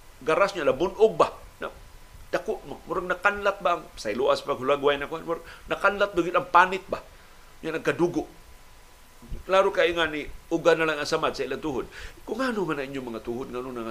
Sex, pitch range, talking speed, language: male, 115-175 Hz, 195 wpm, Filipino